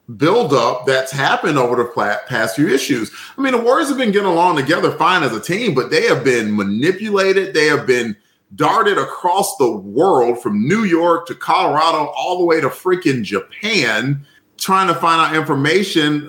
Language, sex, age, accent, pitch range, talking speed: English, male, 40-59, American, 140-210 Hz, 180 wpm